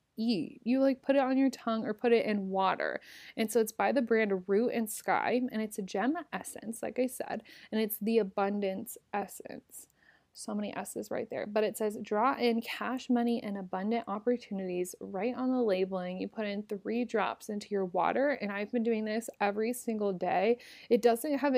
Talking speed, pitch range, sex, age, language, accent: 205 wpm, 205-245 Hz, female, 20-39, English, American